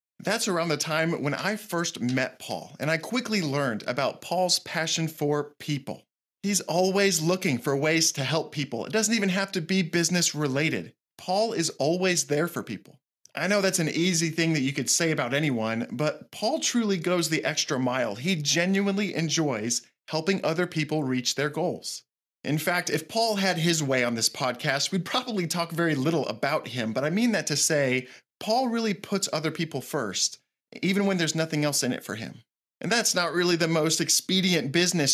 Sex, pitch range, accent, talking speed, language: male, 140-185 Hz, American, 195 wpm, English